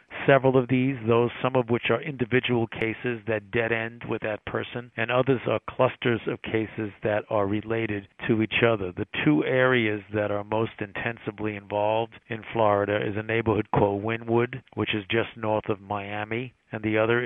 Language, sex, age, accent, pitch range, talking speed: English, male, 50-69, American, 105-115 Hz, 180 wpm